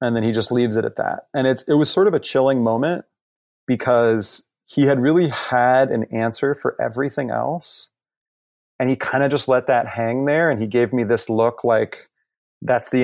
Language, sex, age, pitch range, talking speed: English, male, 30-49, 115-140 Hz, 205 wpm